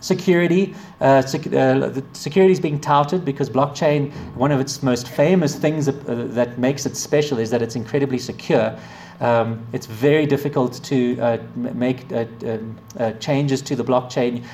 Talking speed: 170 wpm